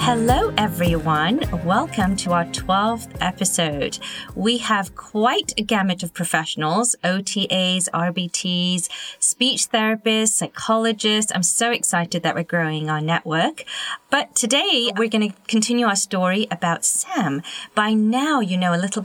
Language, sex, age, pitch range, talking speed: English, female, 30-49, 170-230 Hz, 135 wpm